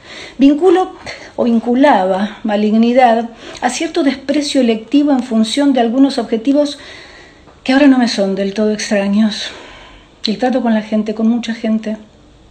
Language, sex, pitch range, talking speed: Spanish, female, 195-255 Hz, 140 wpm